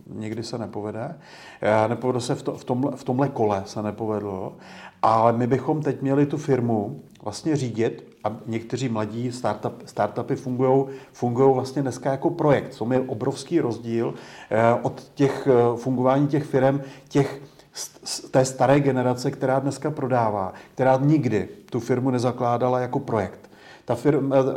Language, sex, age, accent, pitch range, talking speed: Czech, male, 40-59, native, 120-140 Hz, 140 wpm